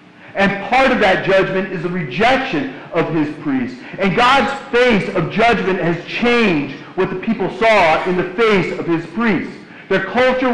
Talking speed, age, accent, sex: 170 wpm, 50-69, American, male